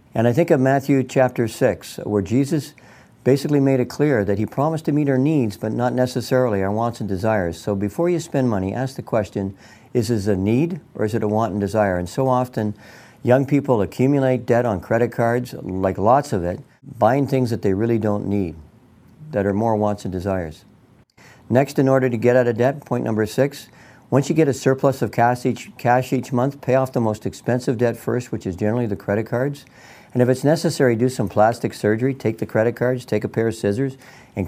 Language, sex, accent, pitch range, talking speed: English, male, American, 105-130 Hz, 220 wpm